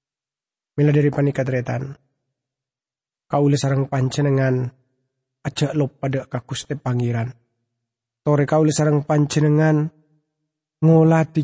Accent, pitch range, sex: Indonesian, 150-185 Hz, male